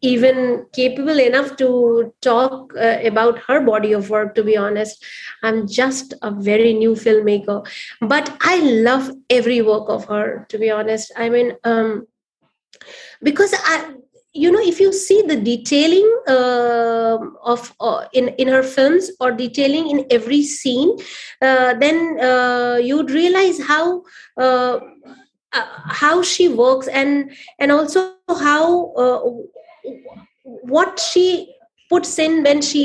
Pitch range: 240-310 Hz